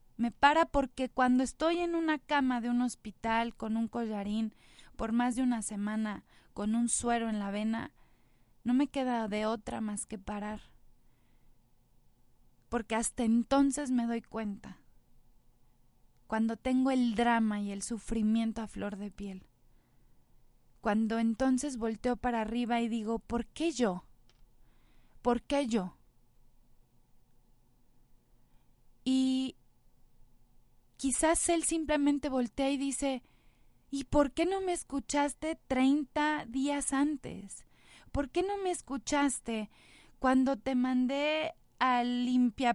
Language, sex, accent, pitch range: Spanish, female, Mexican, 225-275 Hz